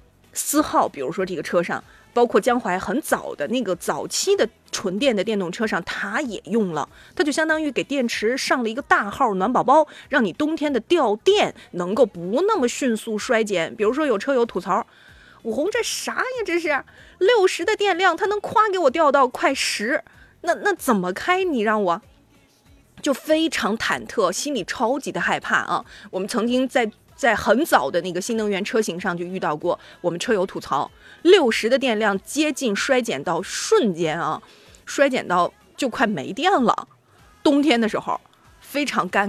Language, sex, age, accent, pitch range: Chinese, female, 30-49, native, 200-305 Hz